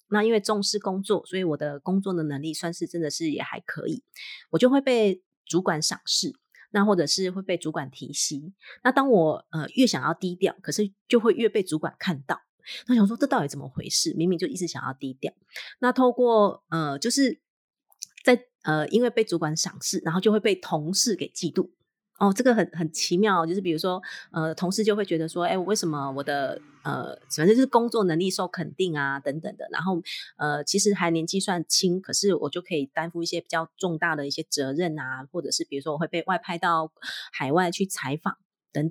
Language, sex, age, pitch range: Chinese, female, 30-49, 160-210 Hz